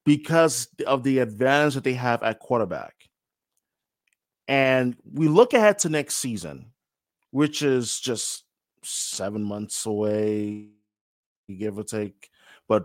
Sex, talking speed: male, 120 wpm